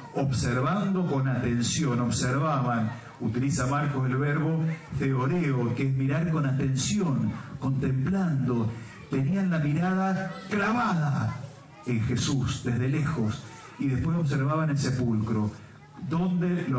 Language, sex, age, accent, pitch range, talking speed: Spanish, male, 50-69, Argentinian, 125-160 Hz, 105 wpm